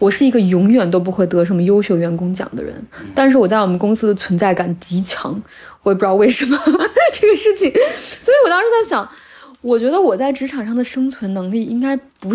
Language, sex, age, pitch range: Chinese, female, 20-39, 190-240 Hz